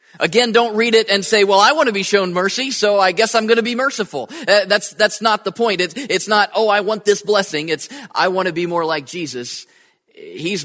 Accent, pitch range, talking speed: American, 165-210 Hz, 250 wpm